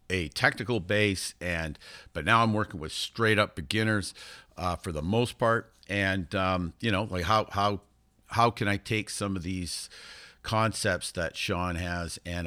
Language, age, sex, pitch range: English, 50-69, male, 95-115 Hz